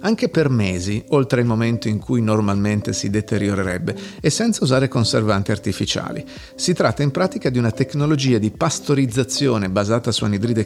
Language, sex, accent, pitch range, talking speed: Italian, male, native, 105-140 Hz, 160 wpm